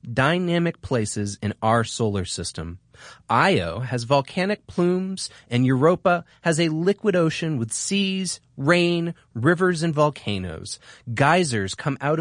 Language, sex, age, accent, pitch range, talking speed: English, male, 30-49, American, 115-170 Hz, 125 wpm